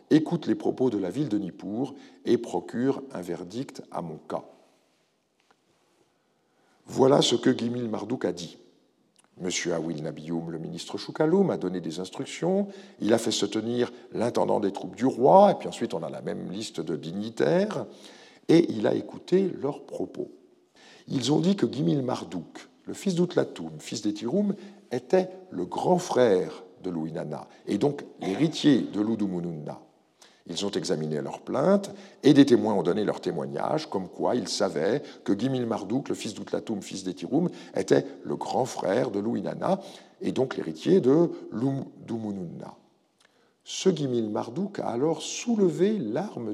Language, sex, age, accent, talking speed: French, male, 50-69, French, 160 wpm